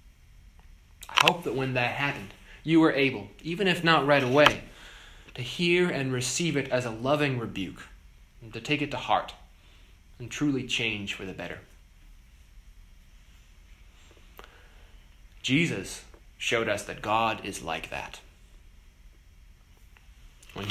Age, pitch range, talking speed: 20-39, 80-135 Hz, 120 wpm